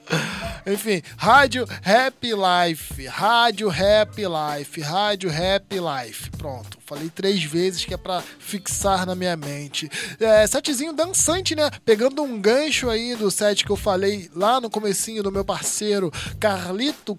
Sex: male